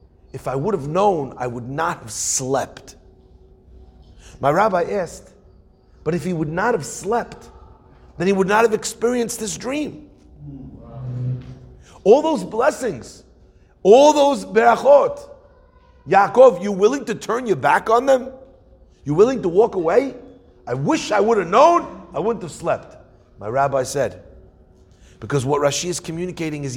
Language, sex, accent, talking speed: English, male, American, 150 wpm